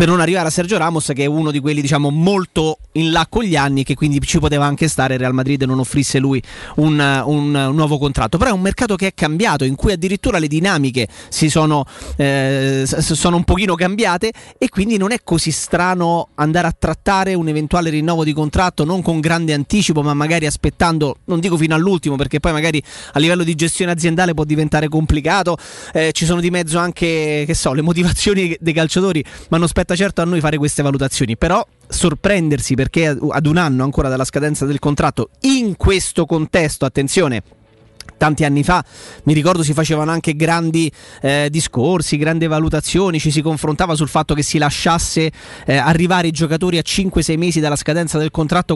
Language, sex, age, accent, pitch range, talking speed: Italian, male, 30-49, native, 145-175 Hz, 195 wpm